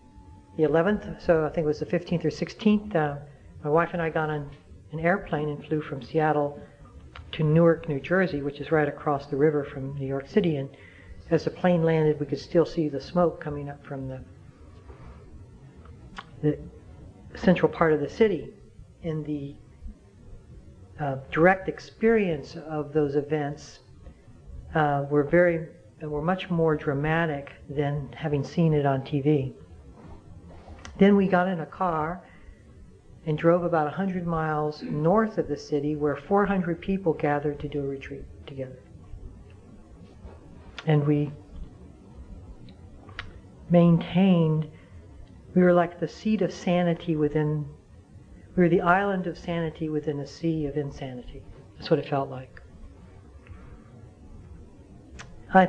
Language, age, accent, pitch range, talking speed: English, 60-79, American, 120-165 Hz, 140 wpm